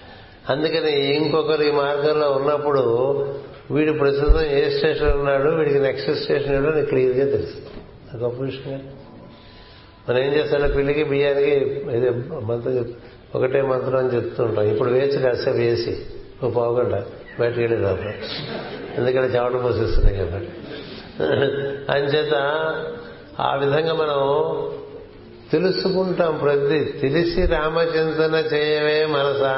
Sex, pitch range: male, 125-155 Hz